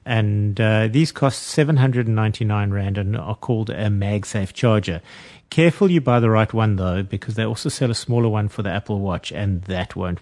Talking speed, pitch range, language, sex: 195 wpm, 100-125 Hz, English, male